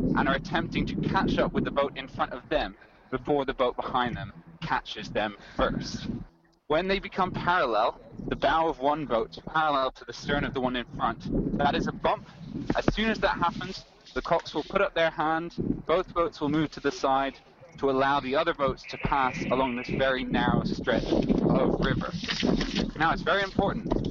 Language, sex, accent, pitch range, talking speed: English, male, British, 130-170 Hz, 200 wpm